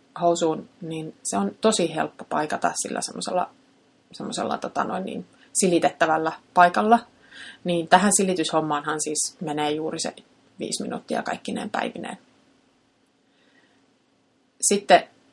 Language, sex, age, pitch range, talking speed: Finnish, female, 30-49, 170-225 Hz, 105 wpm